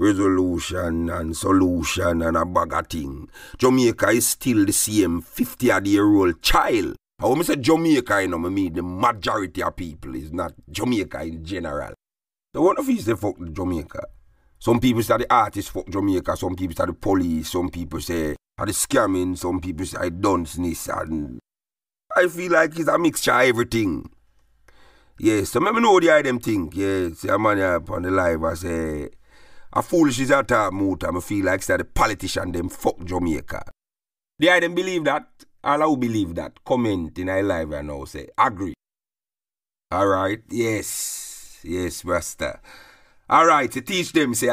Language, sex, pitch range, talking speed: English, male, 85-115 Hz, 180 wpm